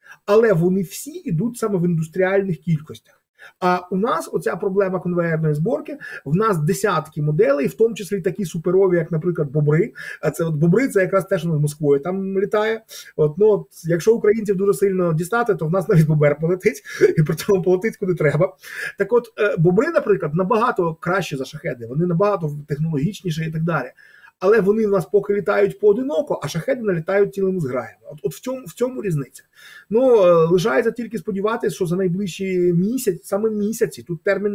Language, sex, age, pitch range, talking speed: Ukrainian, male, 30-49, 160-205 Hz, 180 wpm